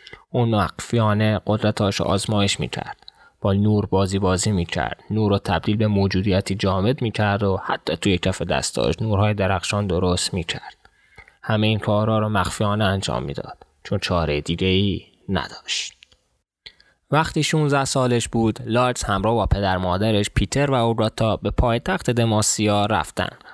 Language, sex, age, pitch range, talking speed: Persian, male, 20-39, 100-120 Hz, 140 wpm